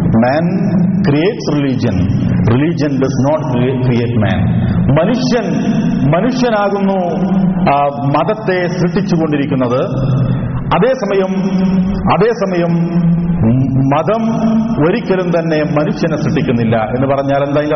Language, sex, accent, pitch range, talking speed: Malayalam, male, native, 130-185 Hz, 95 wpm